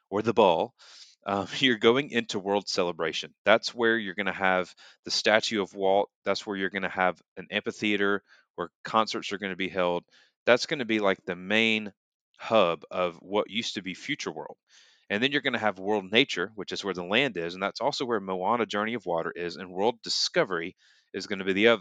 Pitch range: 95-120 Hz